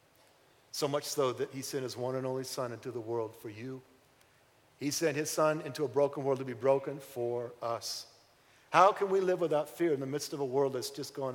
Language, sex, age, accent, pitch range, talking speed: English, male, 50-69, American, 130-180 Hz, 235 wpm